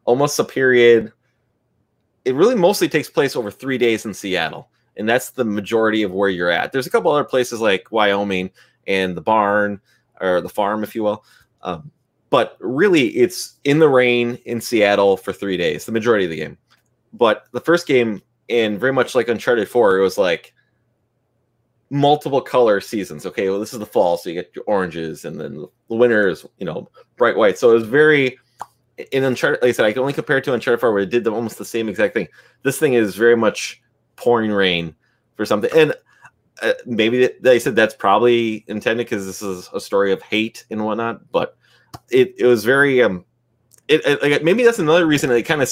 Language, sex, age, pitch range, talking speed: English, male, 20-39, 105-135 Hz, 210 wpm